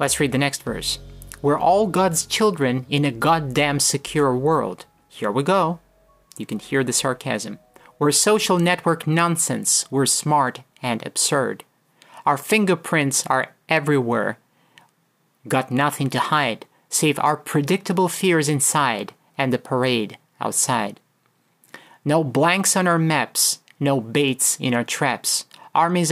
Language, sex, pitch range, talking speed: English, male, 130-165 Hz, 135 wpm